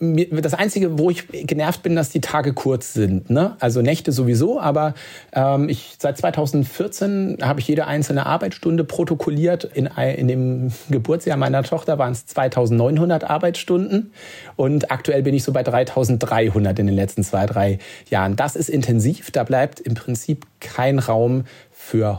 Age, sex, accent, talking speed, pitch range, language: 40-59, male, German, 160 wpm, 120-150 Hz, German